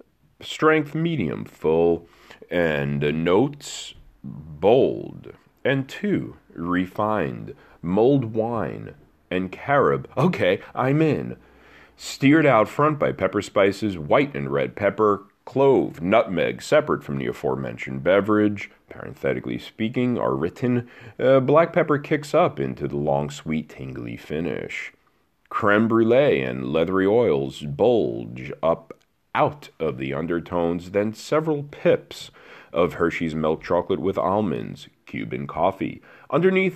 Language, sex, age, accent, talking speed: English, male, 40-59, American, 120 wpm